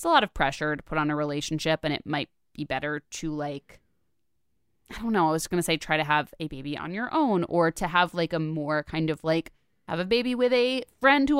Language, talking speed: English, 245 wpm